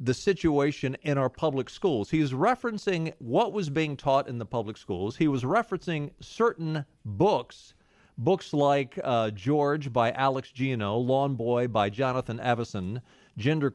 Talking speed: 155 wpm